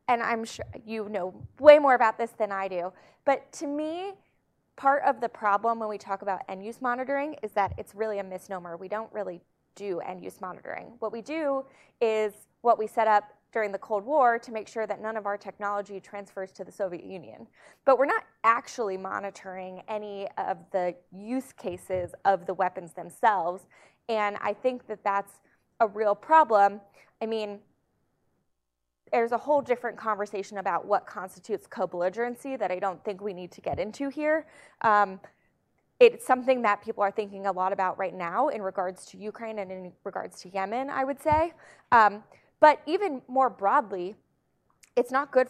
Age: 20-39